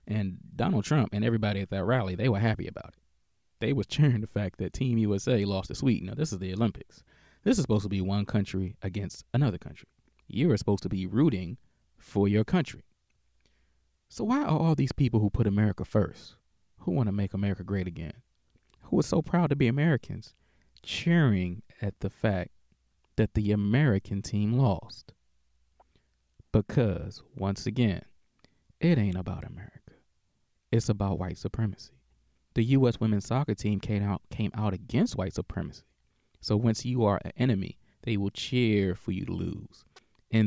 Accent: American